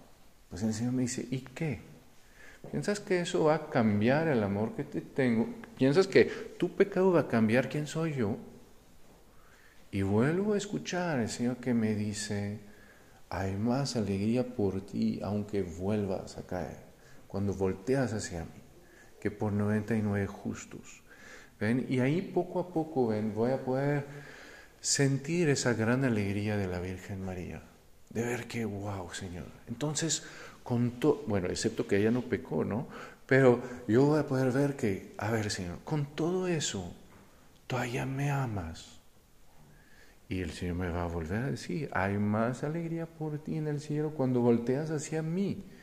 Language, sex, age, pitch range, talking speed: Spanish, male, 50-69, 105-145 Hz, 165 wpm